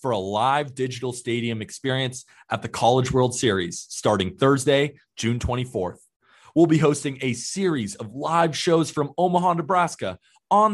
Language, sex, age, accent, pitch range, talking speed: English, male, 30-49, American, 120-150 Hz, 150 wpm